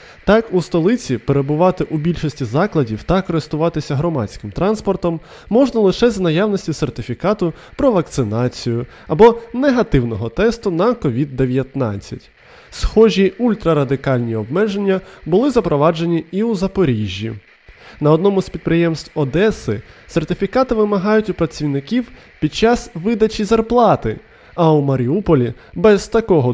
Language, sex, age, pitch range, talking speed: Ukrainian, male, 20-39, 140-210 Hz, 110 wpm